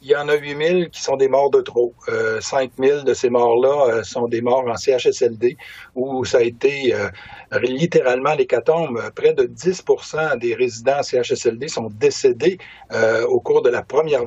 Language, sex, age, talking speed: French, male, 50-69, 195 wpm